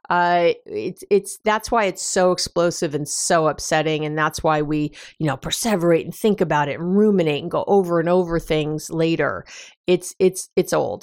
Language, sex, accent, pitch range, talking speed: English, female, American, 165-215 Hz, 190 wpm